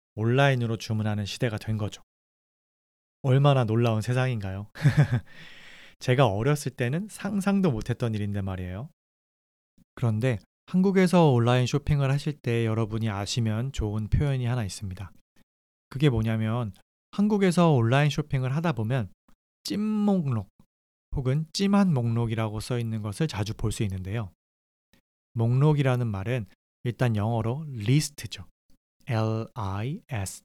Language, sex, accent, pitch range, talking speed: English, male, Korean, 105-145 Hz, 105 wpm